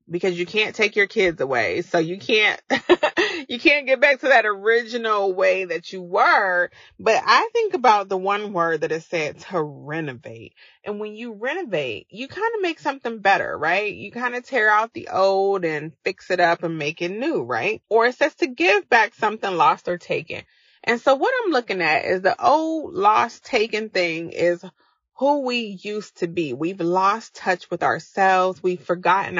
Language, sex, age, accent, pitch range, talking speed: English, female, 30-49, American, 170-240 Hz, 195 wpm